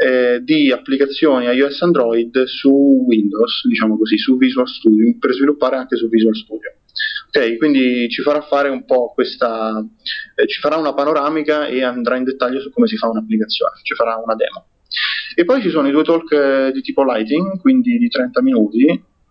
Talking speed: 185 wpm